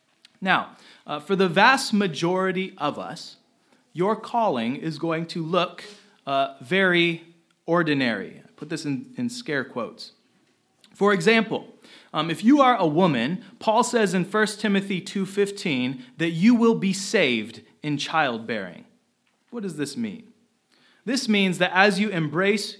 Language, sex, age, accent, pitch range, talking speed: English, male, 30-49, American, 160-215 Hz, 145 wpm